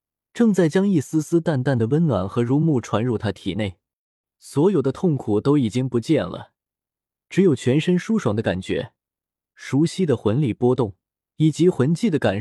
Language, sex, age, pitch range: Chinese, male, 20-39, 110-155 Hz